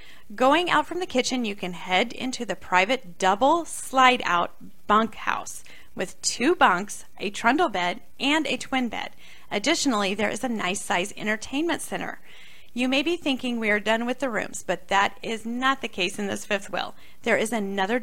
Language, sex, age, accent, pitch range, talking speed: English, female, 30-49, American, 195-265 Hz, 185 wpm